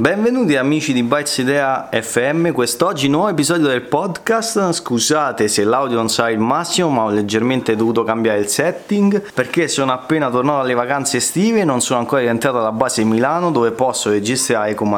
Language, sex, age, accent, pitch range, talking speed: Italian, male, 30-49, native, 110-150 Hz, 175 wpm